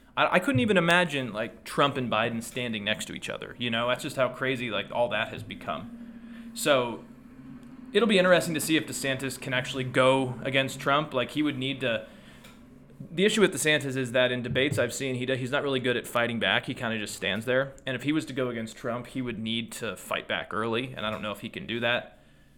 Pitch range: 125-150 Hz